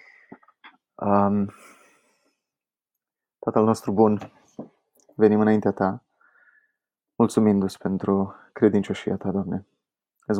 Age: 20-39